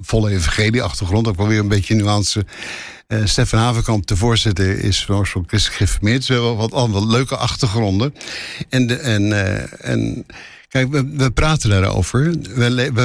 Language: Dutch